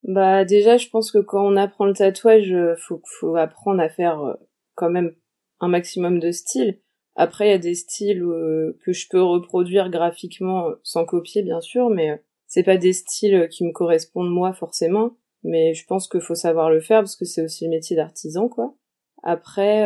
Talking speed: 190 wpm